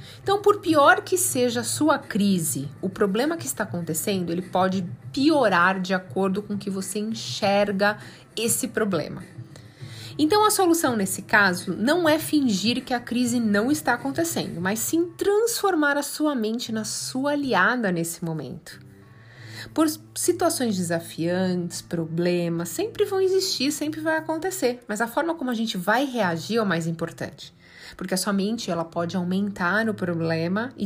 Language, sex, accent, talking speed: Portuguese, female, Brazilian, 160 wpm